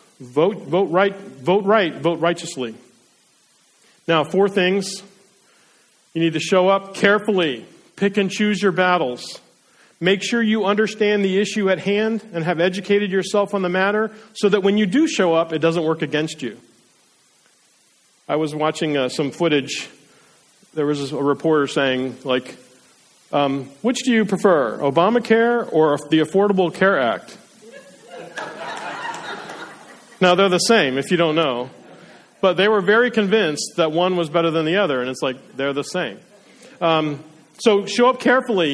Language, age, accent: English, 40-59, American